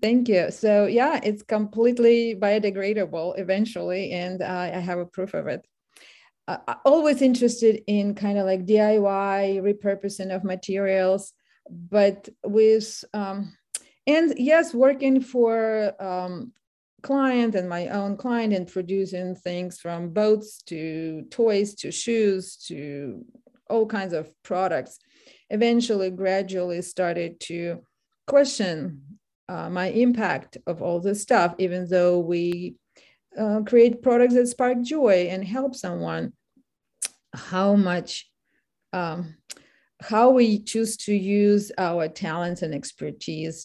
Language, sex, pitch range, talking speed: English, female, 175-225 Hz, 125 wpm